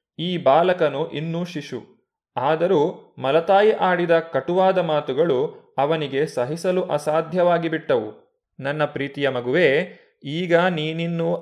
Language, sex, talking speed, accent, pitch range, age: Kannada, male, 90 wpm, native, 140-175 Hz, 20-39